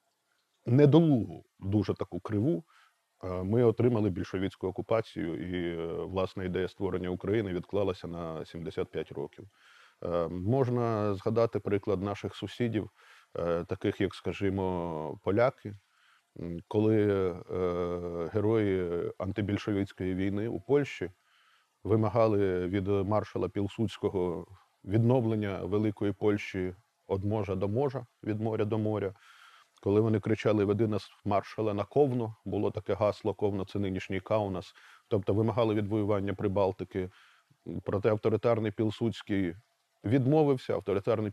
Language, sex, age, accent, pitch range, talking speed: Ukrainian, male, 20-39, native, 95-115 Hz, 105 wpm